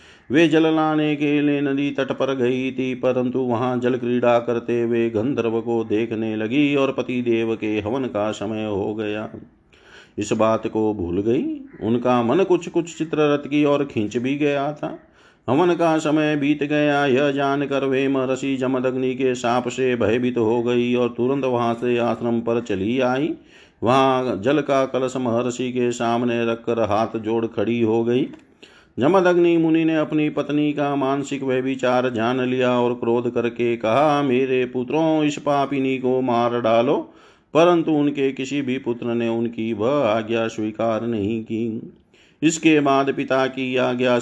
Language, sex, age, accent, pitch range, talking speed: Hindi, male, 50-69, native, 115-140 Hz, 165 wpm